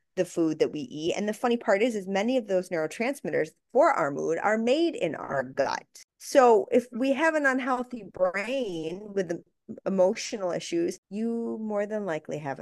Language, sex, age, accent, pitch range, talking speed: English, female, 30-49, American, 165-235 Hz, 180 wpm